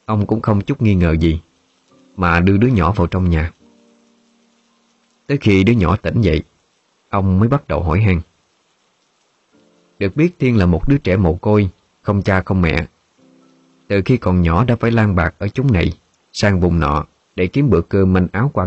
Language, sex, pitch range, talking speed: Vietnamese, male, 85-105 Hz, 195 wpm